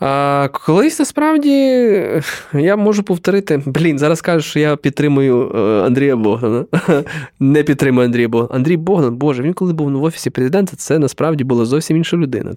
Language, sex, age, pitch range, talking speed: Ukrainian, male, 20-39, 125-170 Hz, 160 wpm